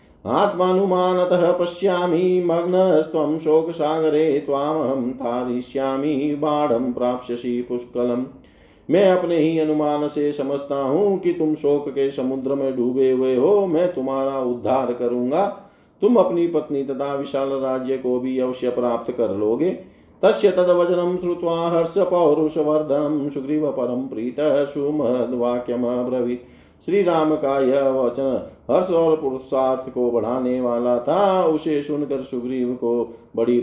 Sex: male